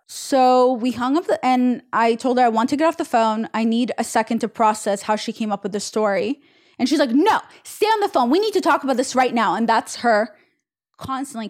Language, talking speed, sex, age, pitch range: English, 250 wpm, female, 20-39, 210-265 Hz